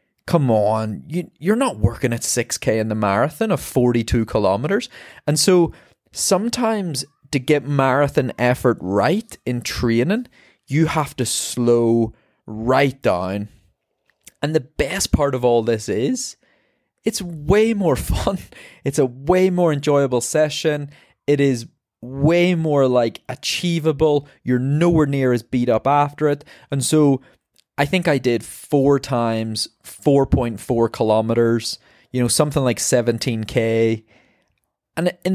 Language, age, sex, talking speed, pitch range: English, 20-39, male, 135 wpm, 120-160 Hz